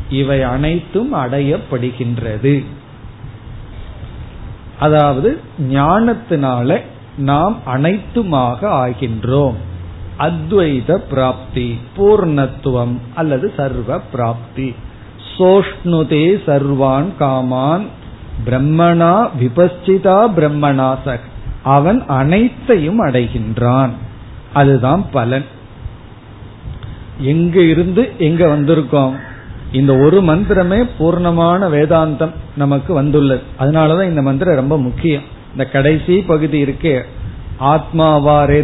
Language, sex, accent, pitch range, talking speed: Tamil, male, native, 125-160 Hz, 70 wpm